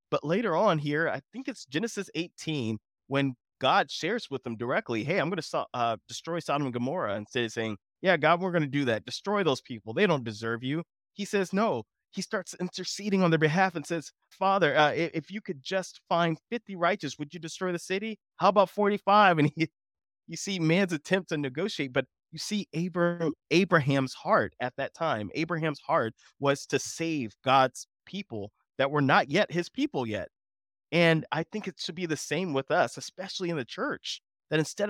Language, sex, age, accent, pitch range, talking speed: English, male, 20-39, American, 135-180 Hz, 195 wpm